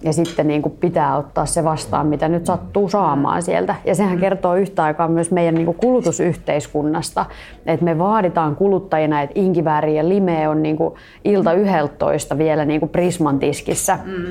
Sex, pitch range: female, 155-190 Hz